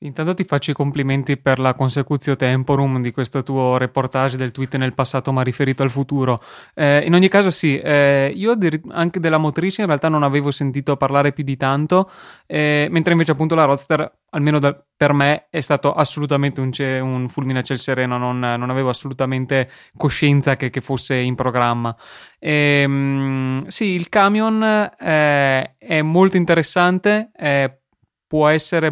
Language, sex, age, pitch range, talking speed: Italian, male, 20-39, 135-155 Hz, 170 wpm